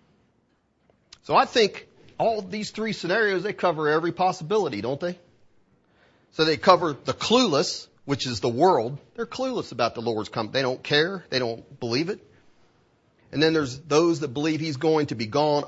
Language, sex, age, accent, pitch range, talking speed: English, male, 40-59, American, 120-170 Hz, 175 wpm